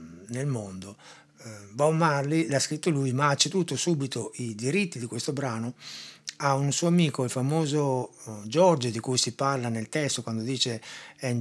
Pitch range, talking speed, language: 110-135 Hz, 180 wpm, Italian